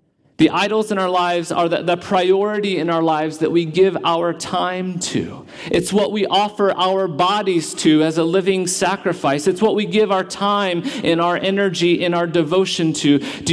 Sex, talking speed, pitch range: male, 190 wpm, 150-190 Hz